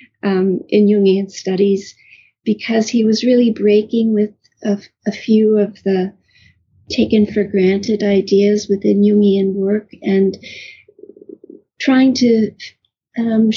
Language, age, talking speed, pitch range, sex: English, 50-69, 115 wpm, 195-235 Hz, female